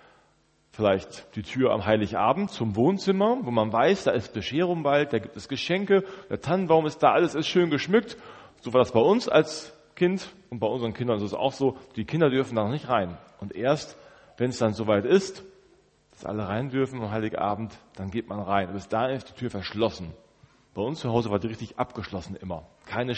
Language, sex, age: German, male, 40-59